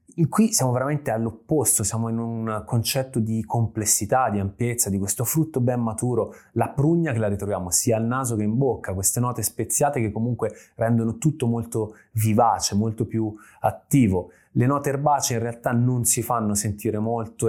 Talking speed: 170 wpm